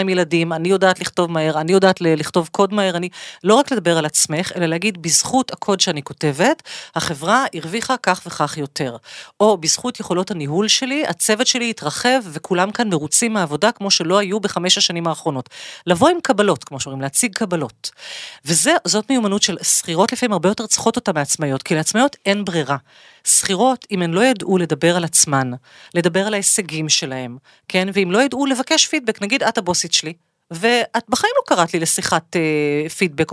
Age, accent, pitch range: 40-59, native, 165-230 Hz